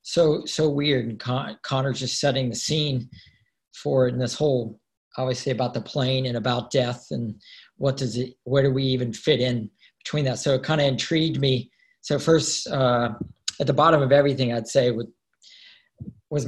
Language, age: English, 40-59